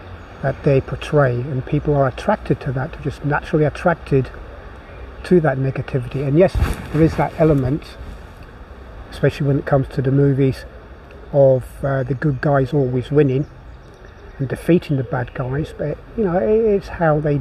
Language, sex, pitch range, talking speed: English, male, 120-150 Hz, 160 wpm